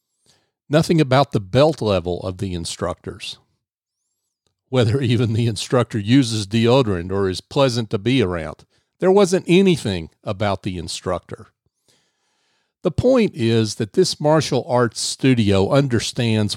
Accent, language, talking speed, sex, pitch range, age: American, English, 125 wpm, male, 110-145 Hz, 50-69